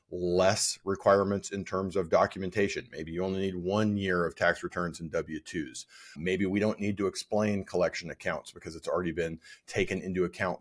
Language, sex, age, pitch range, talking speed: English, male, 40-59, 90-115 Hz, 180 wpm